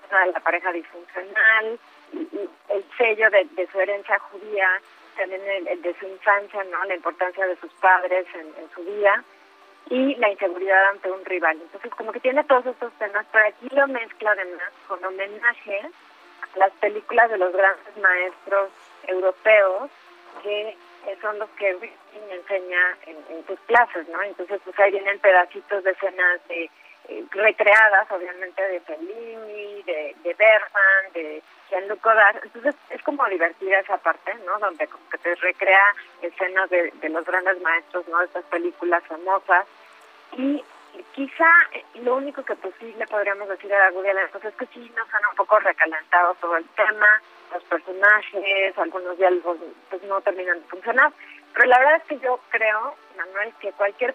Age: 30-49